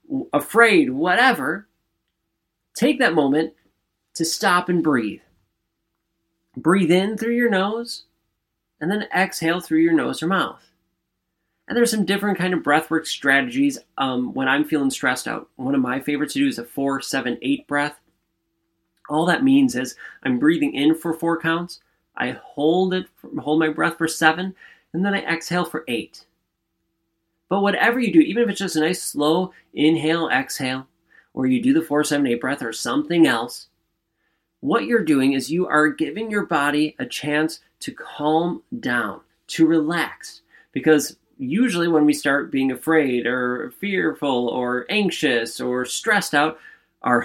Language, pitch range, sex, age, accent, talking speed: English, 140-200 Hz, male, 30-49, American, 160 wpm